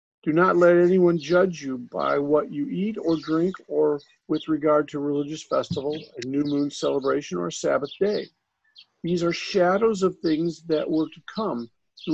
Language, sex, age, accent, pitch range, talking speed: English, male, 50-69, American, 150-190 Hz, 180 wpm